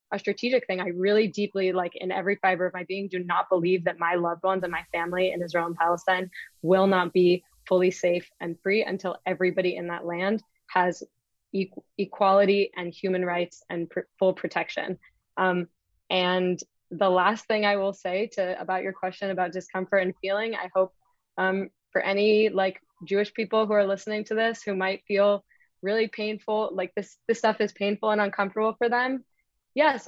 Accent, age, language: American, 20-39, English